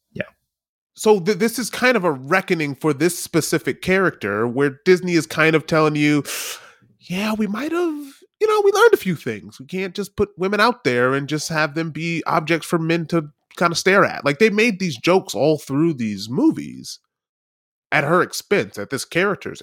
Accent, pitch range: American, 120-175 Hz